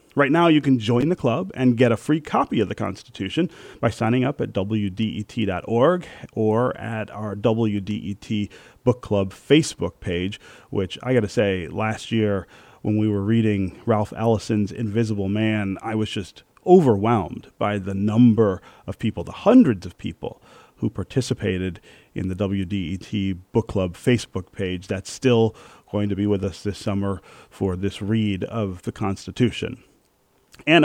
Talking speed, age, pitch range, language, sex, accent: 160 wpm, 40-59, 100-120 Hz, English, male, American